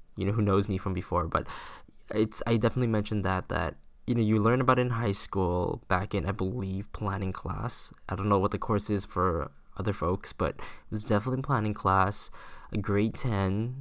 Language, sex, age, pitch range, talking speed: English, male, 10-29, 95-115 Hz, 205 wpm